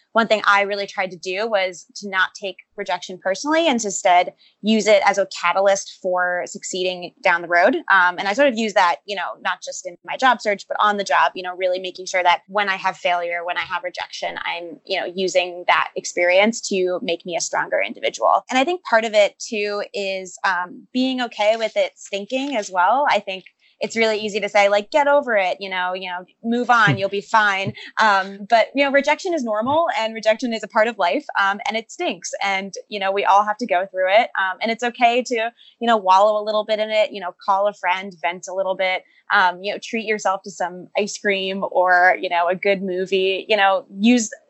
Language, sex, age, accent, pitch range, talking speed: English, female, 20-39, American, 185-225 Hz, 235 wpm